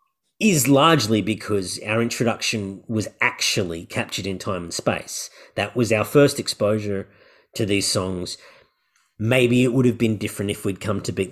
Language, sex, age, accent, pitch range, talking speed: English, male, 40-59, Australian, 105-135 Hz, 165 wpm